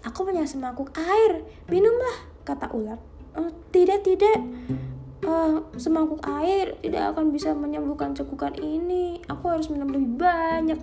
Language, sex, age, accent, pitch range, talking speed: Indonesian, female, 10-29, native, 230-325 Hz, 125 wpm